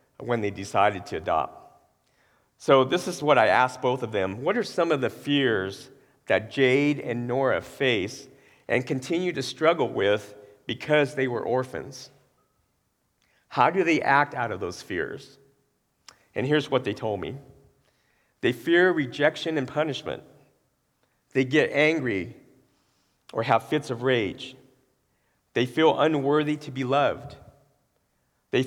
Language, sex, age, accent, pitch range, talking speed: English, male, 50-69, American, 120-145 Hz, 140 wpm